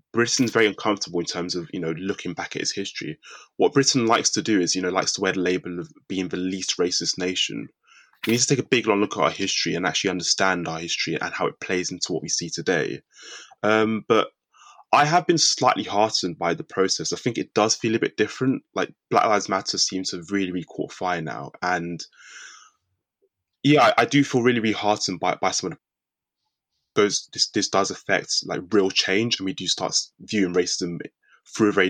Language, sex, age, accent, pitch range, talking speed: English, male, 20-39, British, 90-110 Hz, 220 wpm